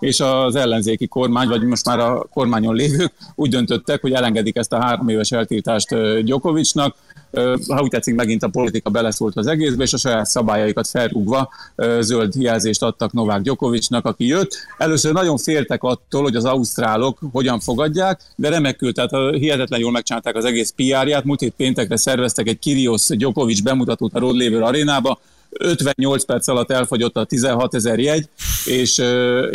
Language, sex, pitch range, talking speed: Hungarian, male, 115-140 Hz, 165 wpm